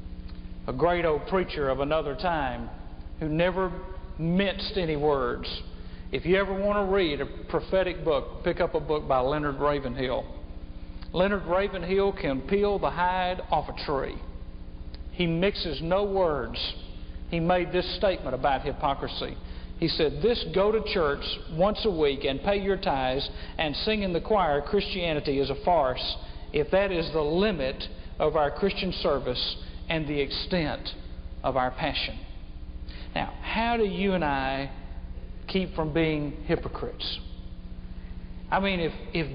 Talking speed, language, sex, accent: 150 wpm, English, male, American